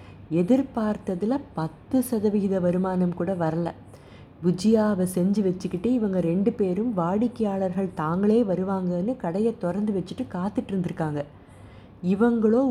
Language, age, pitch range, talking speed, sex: Tamil, 30-49, 165-210 Hz, 100 wpm, female